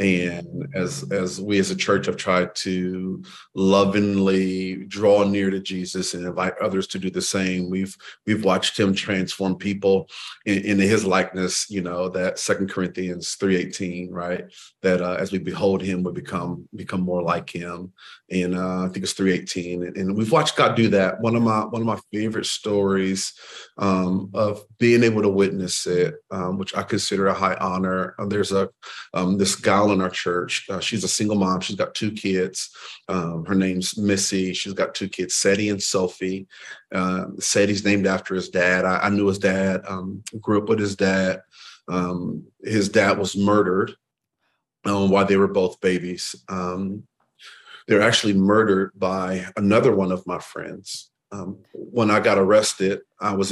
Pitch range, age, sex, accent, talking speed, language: 90-100 Hz, 30-49, male, American, 180 wpm, English